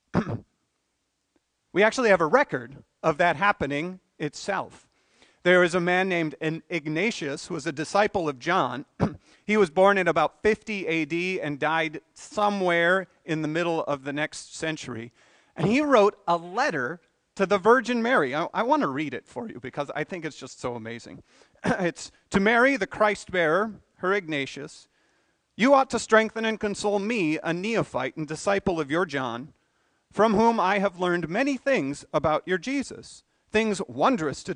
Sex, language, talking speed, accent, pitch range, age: male, English, 165 wpm, American, 155-215 Hz, 40-59